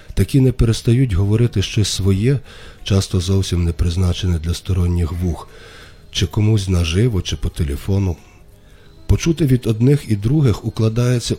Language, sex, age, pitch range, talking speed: Ukrainian, male, 40-59, 90-110 Hz, 130 wpm